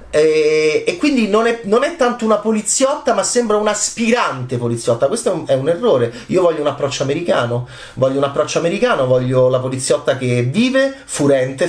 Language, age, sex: Italian, 30-49, male